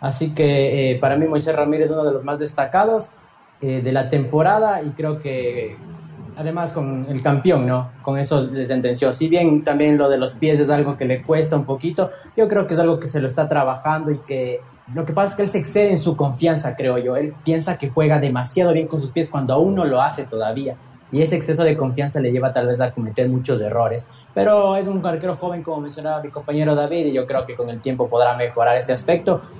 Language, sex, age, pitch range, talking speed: Spanish, male, 30-49, 130-160 Hz, 235 wpm